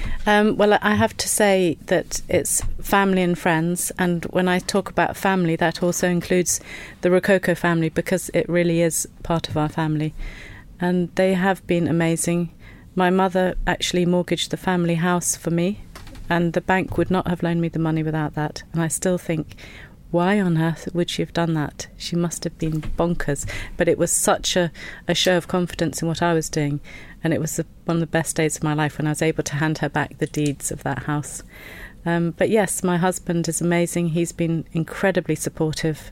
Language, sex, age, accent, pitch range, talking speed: English, female, 40-59, British, 160-175 Hz, 205 wpm